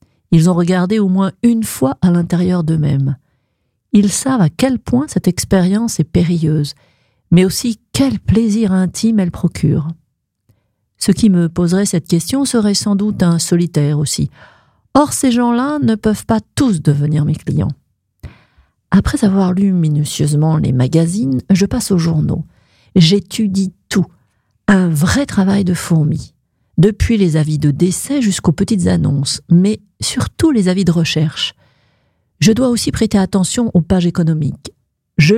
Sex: female